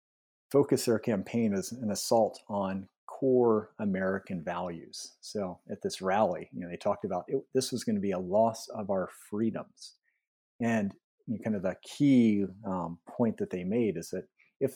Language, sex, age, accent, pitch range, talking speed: English, male, 40-59, American, 100-125 Hz, 170 wpm